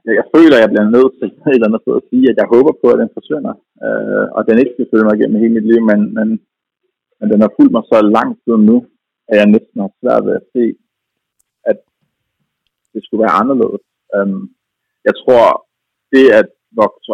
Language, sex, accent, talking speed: Danish, male, native, 200 wpm